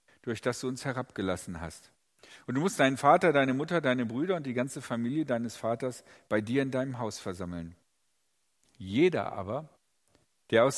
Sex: male